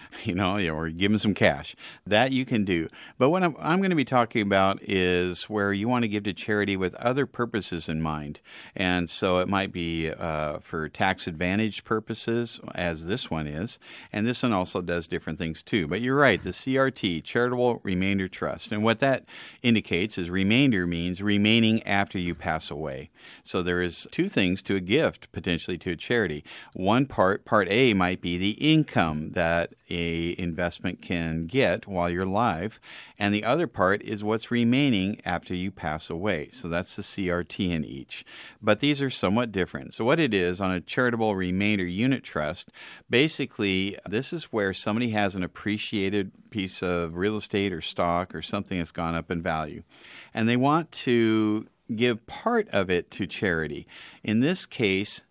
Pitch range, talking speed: 90-115 Hz, 185 wpm